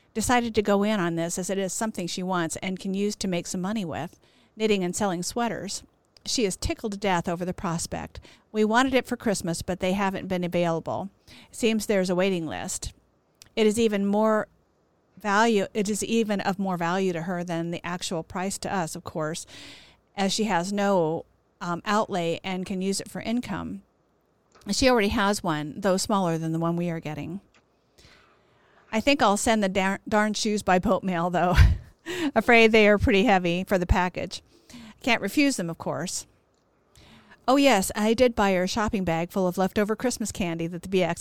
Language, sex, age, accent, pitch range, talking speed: English, female, 50-69, American, 175-215 Hz, 195 wpm